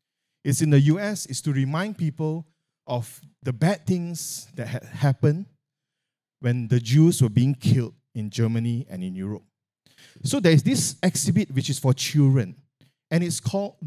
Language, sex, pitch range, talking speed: English, male, 125-155 Hz, 160 wpm